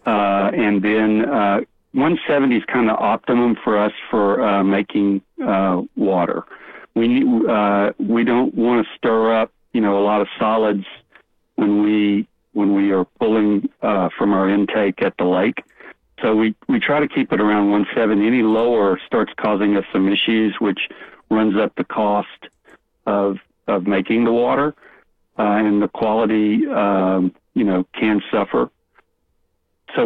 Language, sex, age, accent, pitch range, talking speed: English, male, 60-79, American, 100-120 Hz, 160 wpm